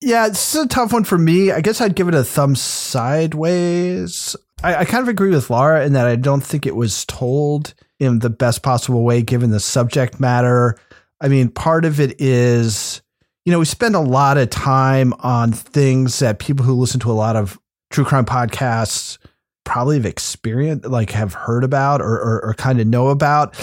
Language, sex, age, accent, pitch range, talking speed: English, male, 30-49, American, 120-155 Hz, 205 wpm